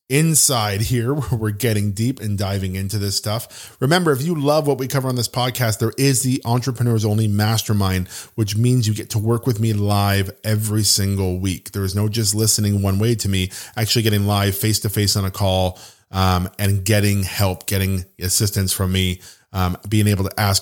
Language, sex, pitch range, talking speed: English, male, 95-115 Hz, 200 wpm